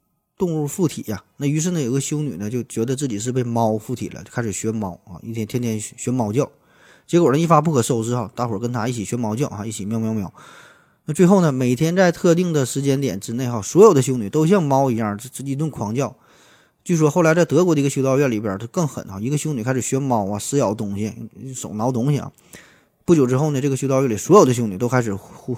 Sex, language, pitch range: male, Chinese, 110-140 Hz